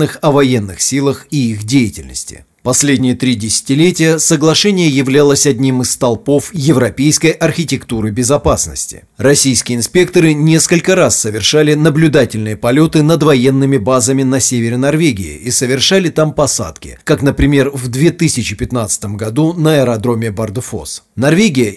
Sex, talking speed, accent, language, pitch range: male, 120 wpm, native, Russian, 120-150 Hz